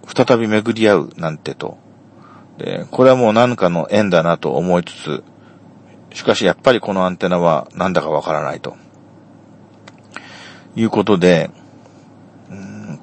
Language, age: Japanese, 50-69